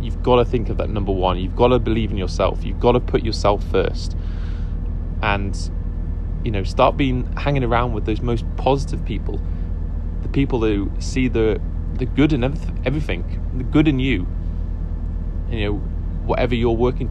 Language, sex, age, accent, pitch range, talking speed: English, male, 20-39, British, 80-110 Hz, 180 wpm